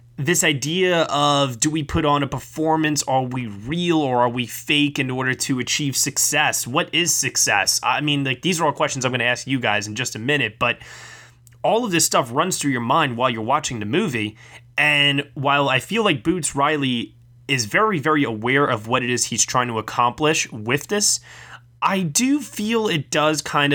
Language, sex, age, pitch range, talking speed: English, male, 20-39, 120-150 Hz, 205 wpm